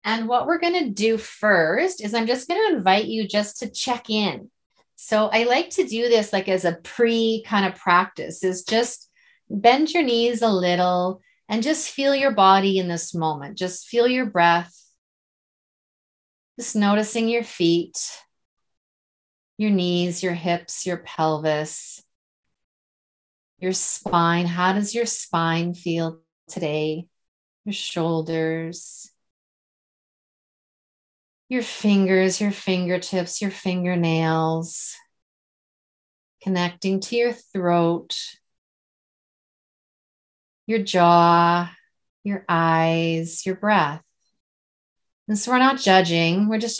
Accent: American